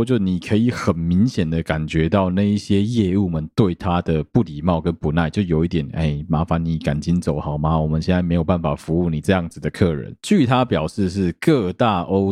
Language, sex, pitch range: Chinese, male, 85-115 Hz